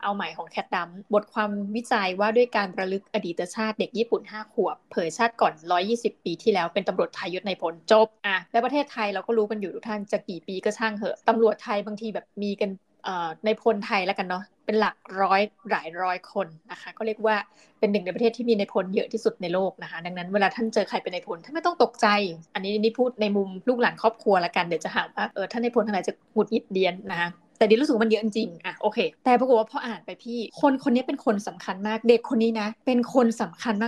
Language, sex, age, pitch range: Thai, female, 20-39, 195-235 Hz